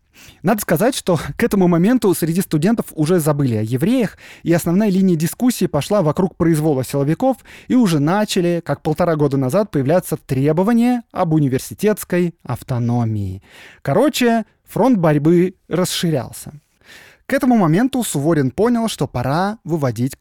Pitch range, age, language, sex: 130-195 Hz, 20-39, Russian, male